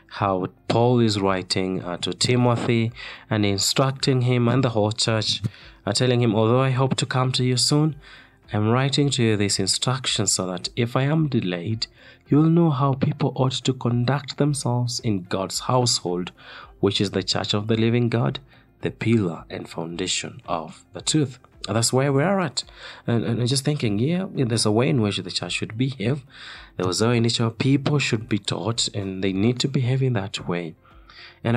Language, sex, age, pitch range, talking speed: English, male, 30-49, 95-125 Hz, 190 wpm